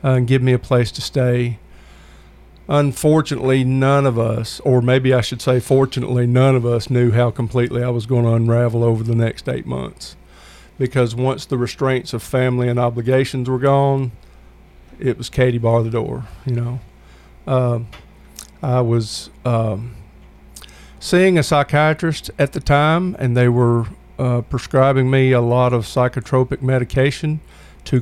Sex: male